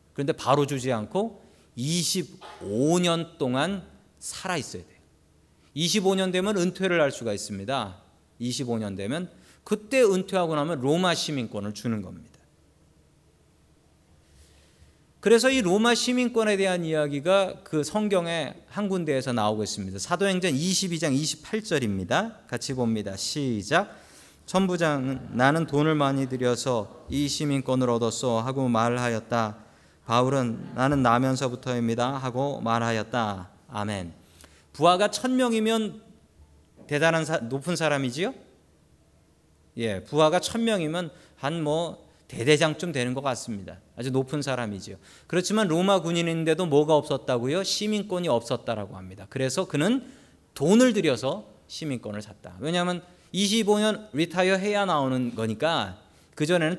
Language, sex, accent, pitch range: Korean, male, native, 115-180 Hz